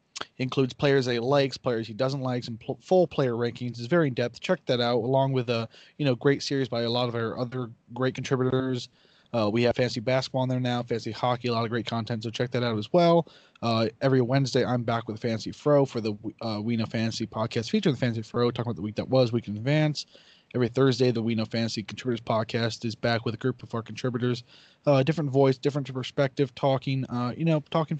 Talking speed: 240 wpm